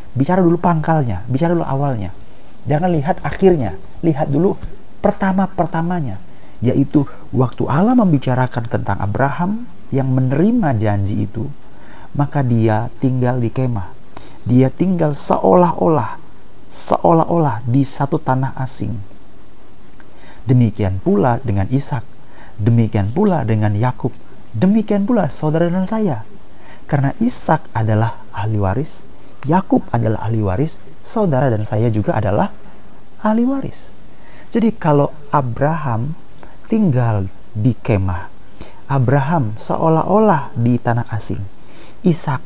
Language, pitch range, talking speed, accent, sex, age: Indonesian, 110-170 Hz, 105 wpm, native, male, 40-59